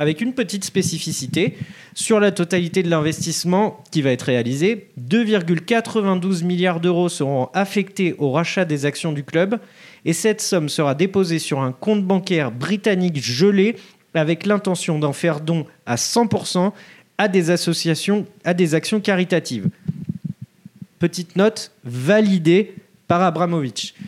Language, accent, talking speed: French, French, 135 wpm